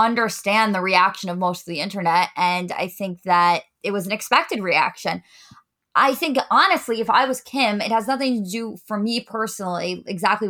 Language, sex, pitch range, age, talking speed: English, female, 195-245 Hz, 20-39, 190 wpm